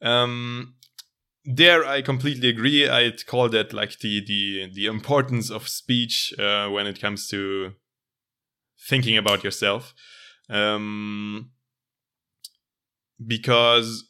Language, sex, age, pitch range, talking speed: English, male, 20-39, 105-130 Hz, 105 wpm